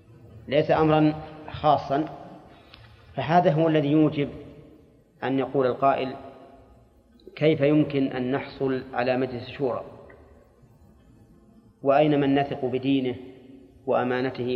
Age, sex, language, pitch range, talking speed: 40-59, male, Arabic, 125-150 Hz, 90 wpm